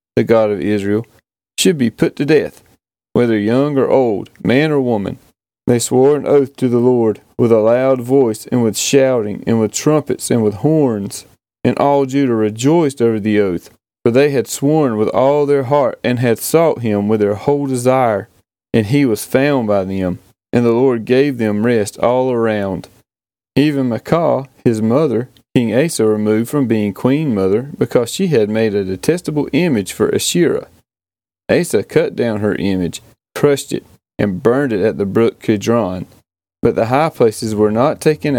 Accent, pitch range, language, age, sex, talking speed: American, 105-140 Hz, English, 30-49, male, 180 wpm